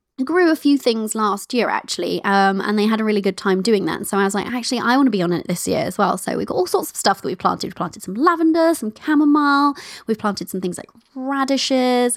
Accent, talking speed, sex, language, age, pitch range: British, 270 wpm, female, English, 20-39, 195-255 Hz